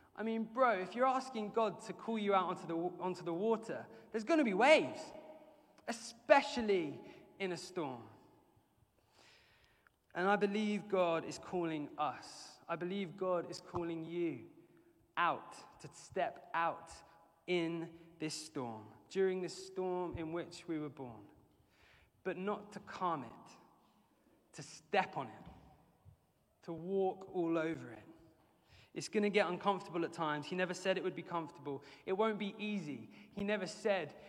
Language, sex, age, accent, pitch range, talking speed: English, male, 20-39, British, 165-210 Hz, 155 wpm